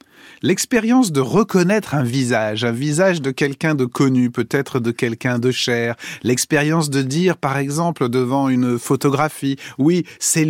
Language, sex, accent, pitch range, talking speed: French, male, French, 125-170 Hz, 150 wpm